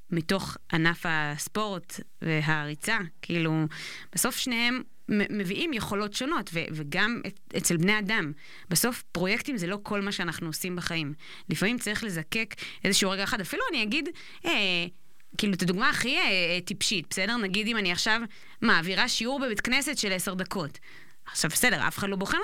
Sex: female